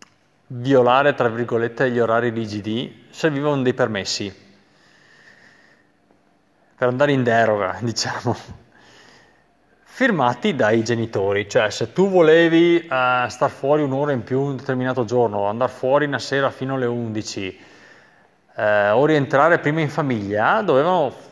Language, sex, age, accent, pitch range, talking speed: Italian, male, 30-49, native, 115-170 Hz, 125 wpm